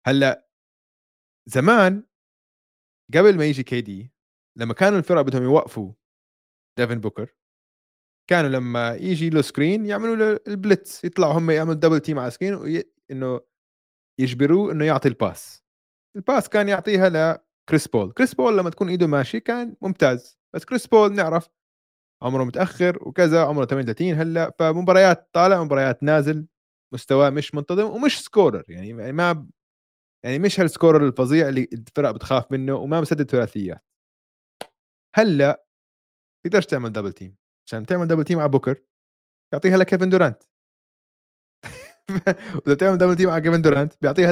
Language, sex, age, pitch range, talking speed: Arabic, male, 20-39, 125-180 Hz, 140 wpm